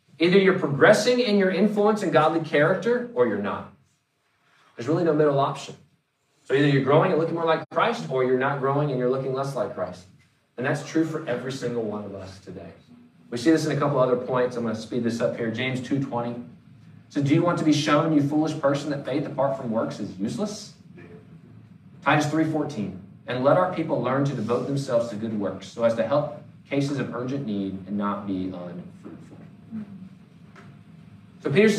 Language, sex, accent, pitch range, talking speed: English, male, American, 125-160 Hz, 200 wpm